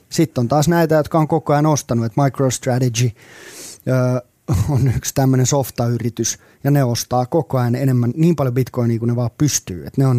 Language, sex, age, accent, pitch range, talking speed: Finnish, male, 30-49, native, 120-145 Hz, 185 wpm